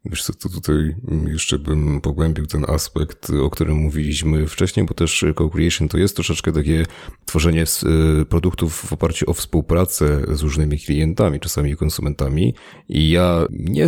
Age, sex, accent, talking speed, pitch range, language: 30-49, male, native, 145 wpm, 75-90 Hz, Polish